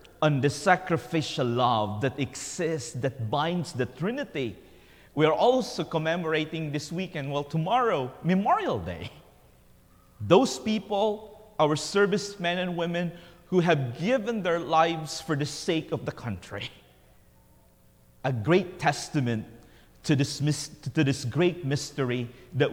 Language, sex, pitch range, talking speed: English, male, 125-175 Hz, 120 wpm